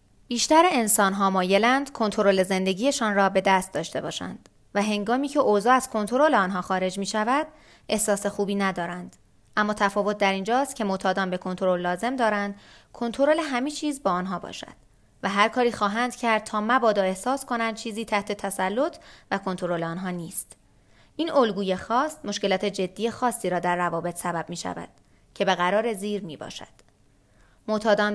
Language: Persian